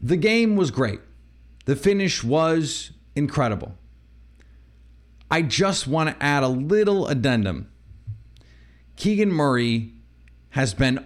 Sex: male